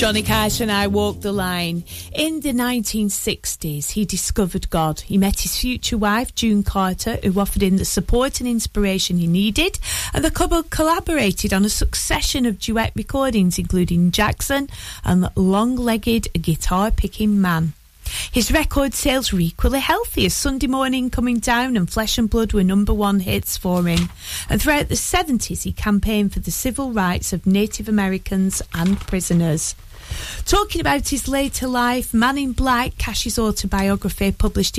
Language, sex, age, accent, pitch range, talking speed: English, female, 30-49, British, 185-245 Hz, 160 wpm